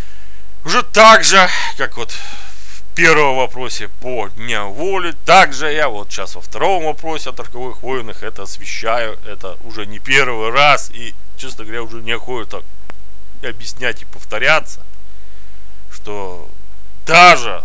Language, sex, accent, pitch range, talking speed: Russian, male, native, 95-130 Hz, 135 wpm